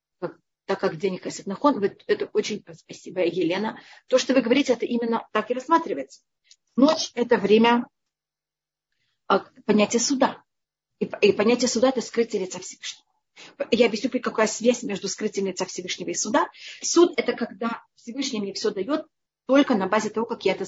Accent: native